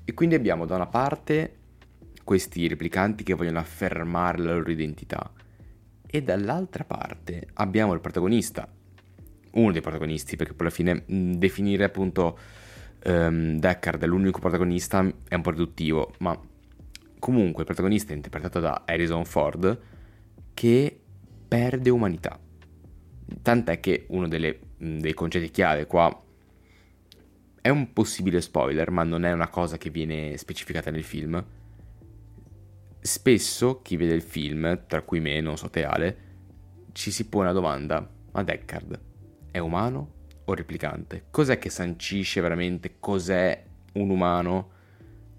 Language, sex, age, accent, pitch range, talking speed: Italian, male, 20-39, native, 85-100 Hz, 135 wpm